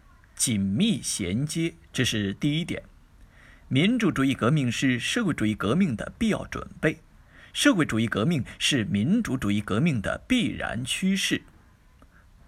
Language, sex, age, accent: Chinese, male, 50-69, native